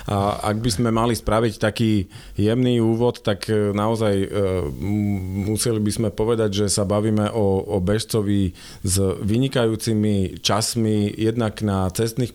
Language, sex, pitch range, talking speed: Slovak, male, 105-125 Hz, 135 wpm